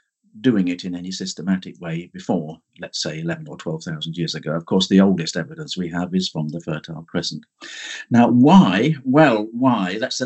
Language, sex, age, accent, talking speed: English, male, 50-69, British, 180 wpm